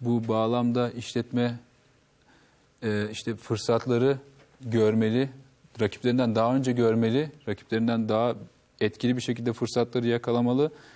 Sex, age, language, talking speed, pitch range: male, 40-59, Turkish, 100 wpm, 110-135 Hz